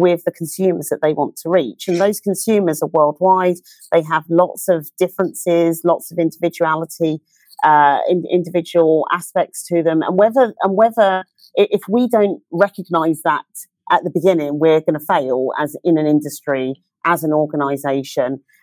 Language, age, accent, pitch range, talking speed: English, 40-59, British, 150-185 Hz, 160 wpm